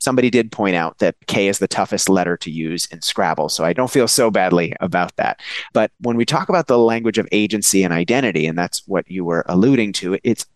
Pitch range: 95-130 Hz